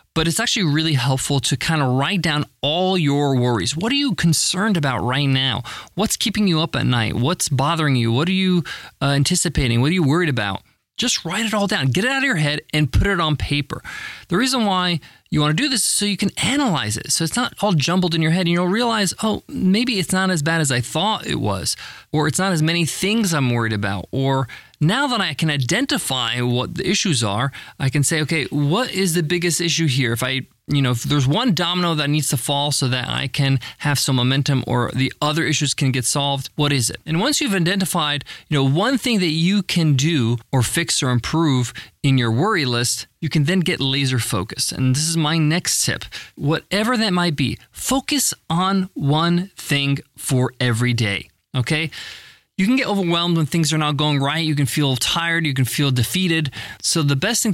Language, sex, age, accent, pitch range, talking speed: English, male, 20-39, American, 135-185 Hz, 225 wpm